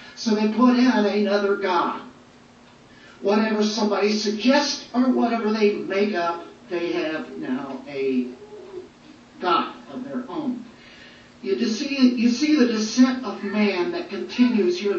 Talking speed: 130 wpm